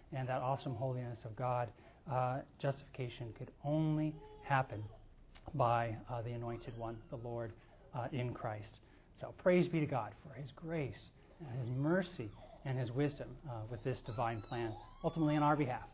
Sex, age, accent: male, 40-59, American